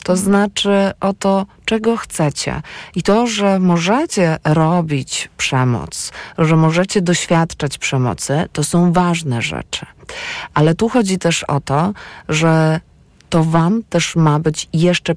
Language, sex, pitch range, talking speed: Polish, female, 140-180 Hz, 130 wpm